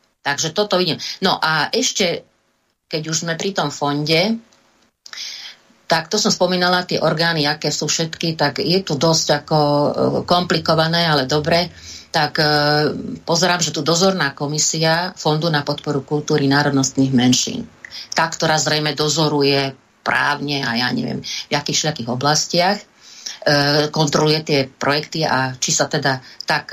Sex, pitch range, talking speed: female, 145-175 Hz, 140 wpm